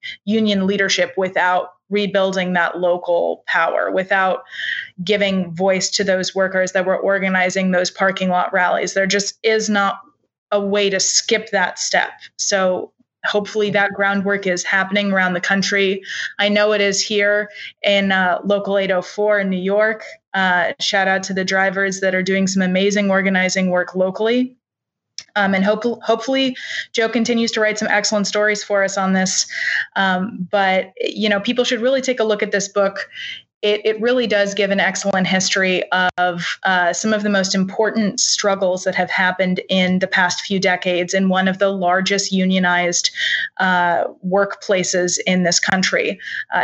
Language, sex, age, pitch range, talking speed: English, female, 20-39, 185-205 Hz, 165 wpm